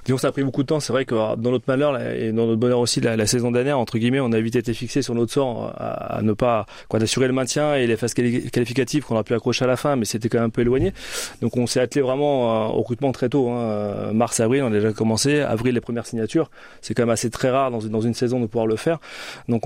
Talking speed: 295 wpm